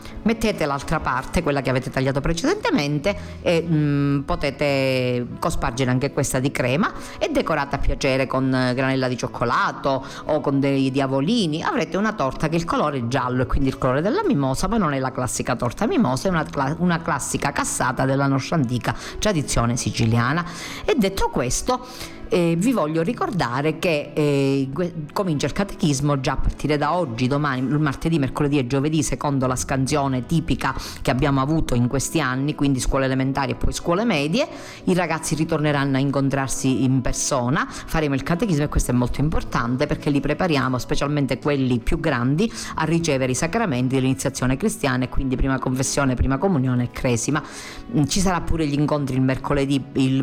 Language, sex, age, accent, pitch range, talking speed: Italian, female, 40-59, native, 130-155 Hz, 170 wpm